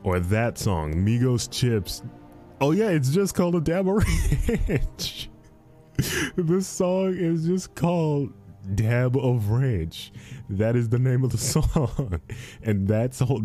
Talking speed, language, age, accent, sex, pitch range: 145 wpm, English, 20-39, American, male, 90-115 Hz